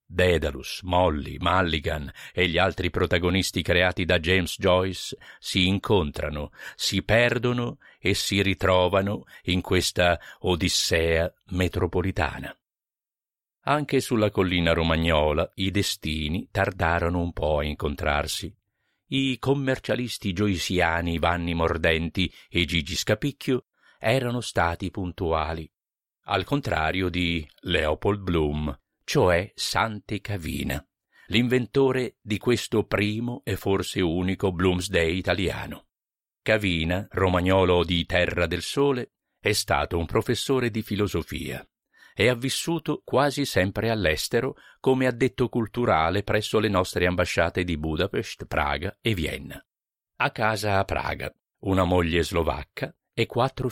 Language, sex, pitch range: Italian, male, 85-110 Hz